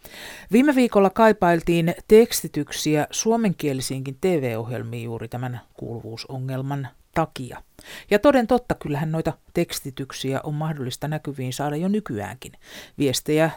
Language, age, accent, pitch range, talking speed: Finnish, 50-69, native, 125-170 Hz, 100 wpm